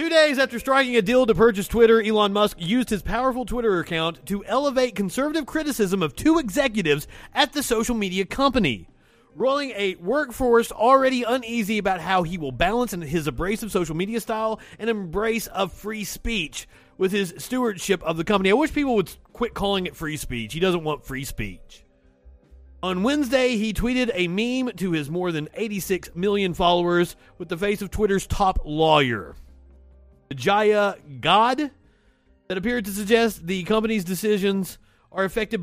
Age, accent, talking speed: 30-49, American, 165 wpm